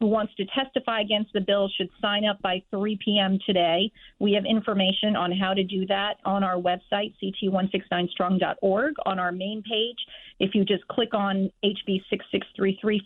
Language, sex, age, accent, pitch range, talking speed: English, female, 40-59, American, 195-235 Hz, 170 wpm